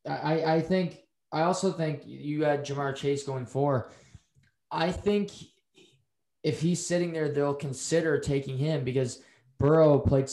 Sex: male